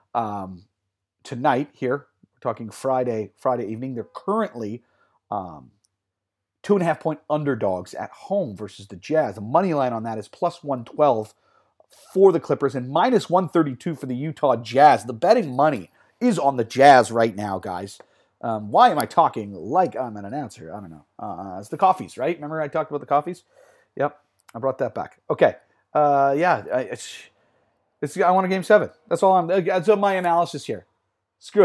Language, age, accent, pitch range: English, 40-59, American, 115-180 Hz